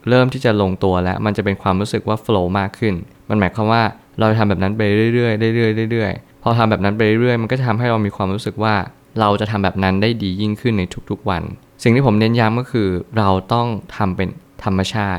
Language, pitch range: Thai, 95-115 Hz